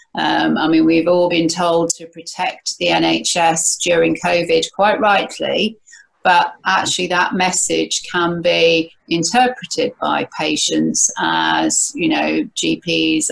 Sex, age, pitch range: female, 40-59, 160-185 Hz